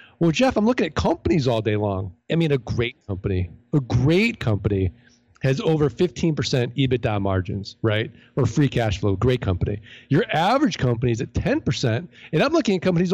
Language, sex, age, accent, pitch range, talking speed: English, male, 40-59, American, 120-170 Hz, 185 wpm